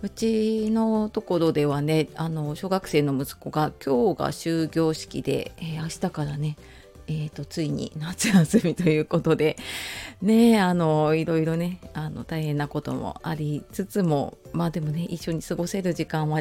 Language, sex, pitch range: Japanese, female, 150-195 Hz